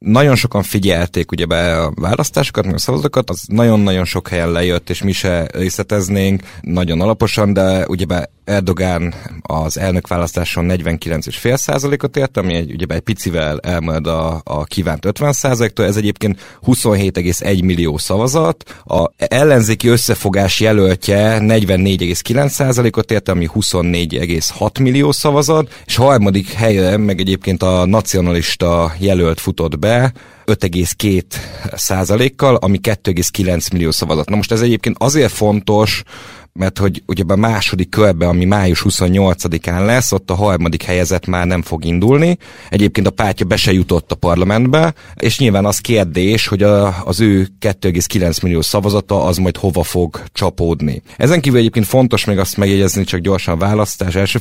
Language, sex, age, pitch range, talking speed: Hungarian, male, 30-49, 90-115 Hz, 145 wpm